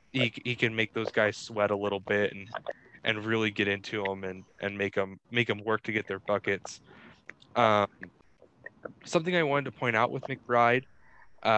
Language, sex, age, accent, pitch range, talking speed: English, male, 10-29, American, 105-120 Hz, 185 wpm